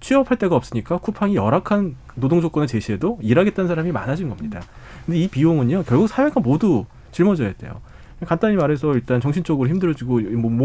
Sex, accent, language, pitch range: male, native, Korean, 115-165 Hz